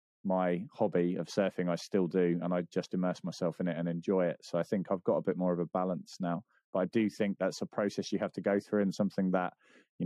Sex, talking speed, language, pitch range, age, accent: male, 270 wpm, English, 90-105 Hz, 20-39, British